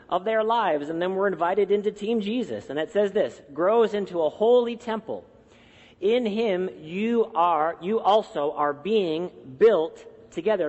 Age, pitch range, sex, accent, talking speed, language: 40-59, 160-210 Hz, male, American, 165 wpm, English